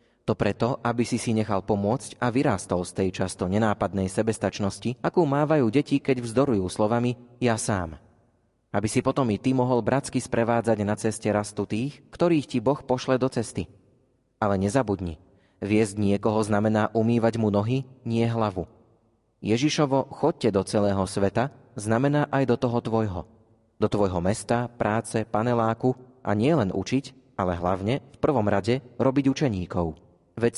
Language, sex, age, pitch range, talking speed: Slovak, male, 30-49, 105-125 Hz, 150 wpm